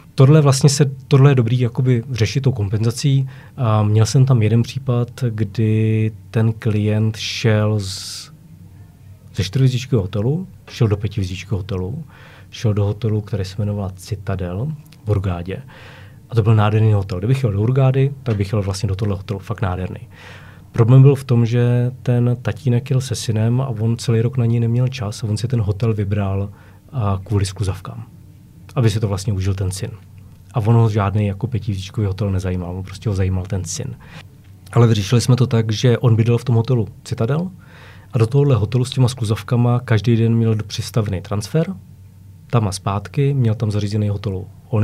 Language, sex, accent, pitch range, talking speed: Czech, male, native, 100-125 Hz, 175 wpm